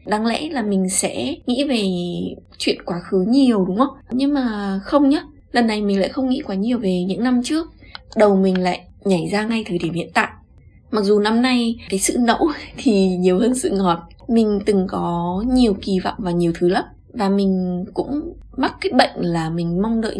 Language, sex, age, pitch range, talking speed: Vietnamese, female, 20-39, 185-255 Hz, 210 wpm